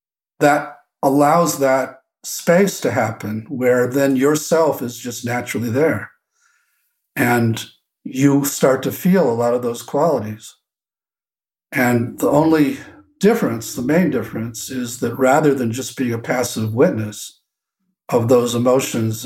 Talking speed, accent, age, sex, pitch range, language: 130 wpm, American, 50-69, male, 115-145 Hz, English